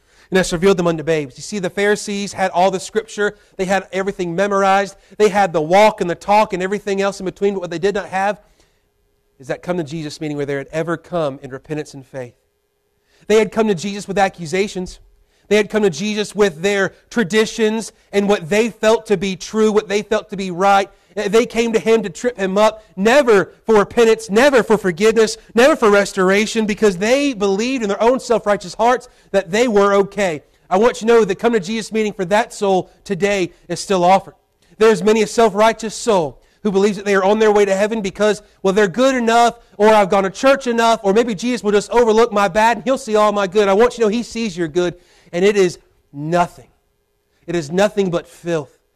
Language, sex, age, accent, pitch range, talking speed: English, male, 40-59, American, 185-220 Hz, 225 wpm